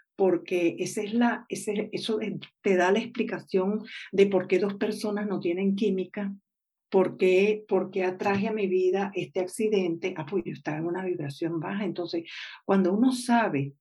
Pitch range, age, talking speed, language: 180-220 Hz, 50-69, 175 wpm, Spanish